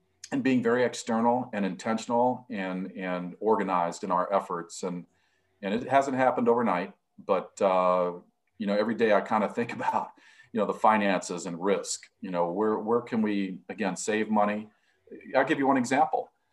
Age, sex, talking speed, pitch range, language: 40-59, male, 180 wpm, 95-120 Hz, English